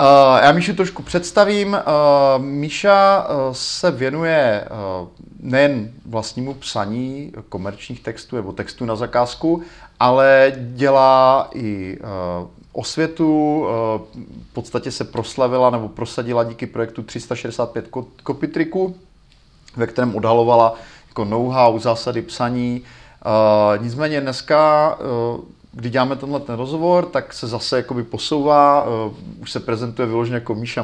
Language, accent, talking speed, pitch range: Czech, native, 120 wpm, 115-145 Hz